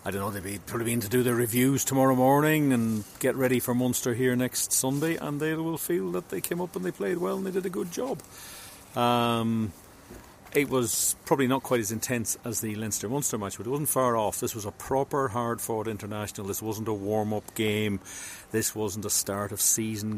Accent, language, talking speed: Irish, English, 210 wpm